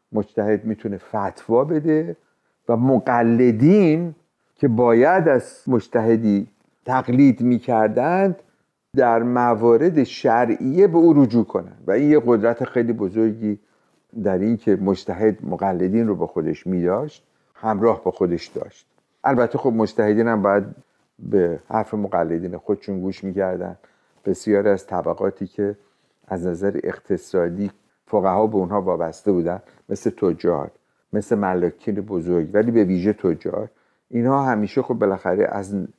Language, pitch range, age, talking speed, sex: Persian, 95-120 Hz, 50-69, 125 wpm, male